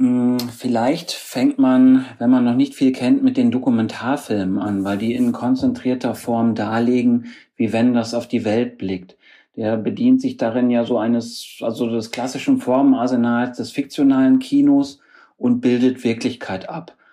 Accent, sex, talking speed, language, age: German, male, 155 wpm, German, 40-59